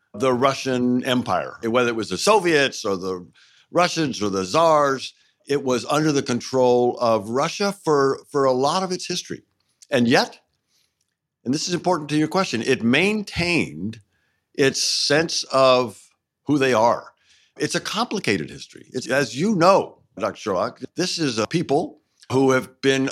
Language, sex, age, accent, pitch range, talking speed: English, male, 60-79, American, 120-155 Hz, 160 wpm